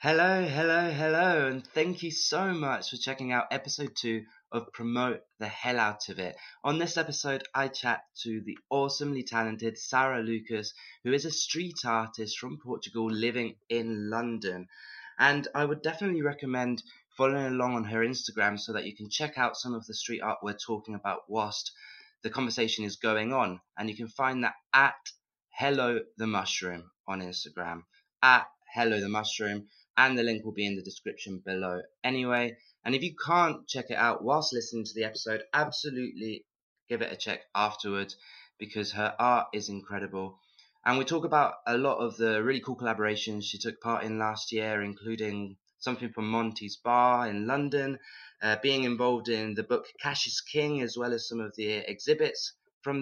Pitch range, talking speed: 110-135 Hz, 175 wpm